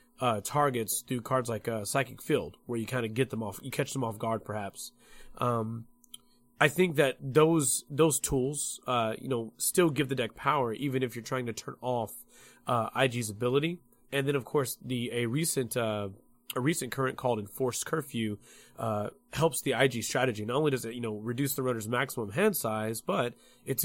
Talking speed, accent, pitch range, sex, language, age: 195 wpm, American, 115-145 Hz, male, English, 30-49